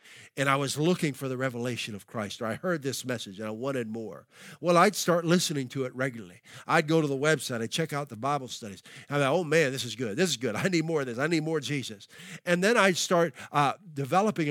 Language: English